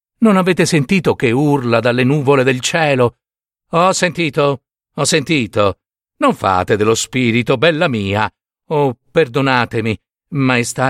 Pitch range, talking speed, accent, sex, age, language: 110-160 Hz, 120 wpm, native, male, 50-69, Italian